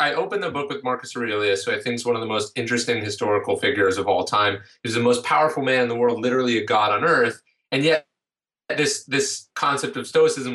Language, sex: English, male